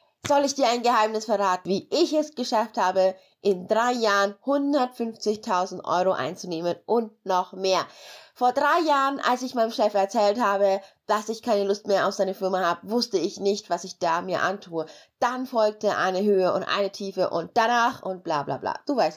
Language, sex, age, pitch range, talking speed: German, female, 20-39, 190-240 Hz, 190 wpm